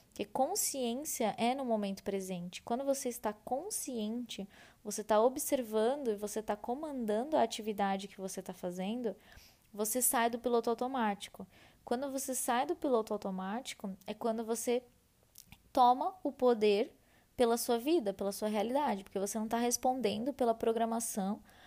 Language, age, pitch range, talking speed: Portuguese, 10-29, 210-245 Hz, 145 wpm